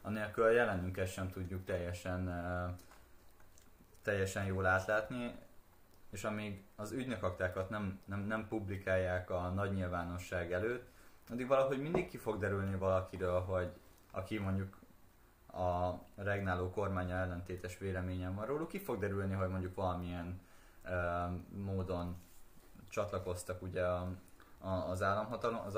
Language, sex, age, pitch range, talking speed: Hungarian, male, 20-39, 90-105 Hz, 120 wpm